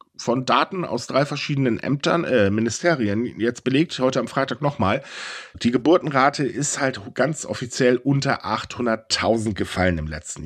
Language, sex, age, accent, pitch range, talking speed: German, male, 10-29, German, 110-170 Hz, 145 wpm